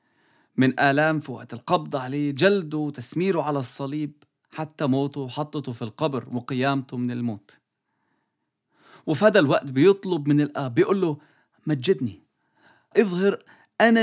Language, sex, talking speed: English, male, 125 wpm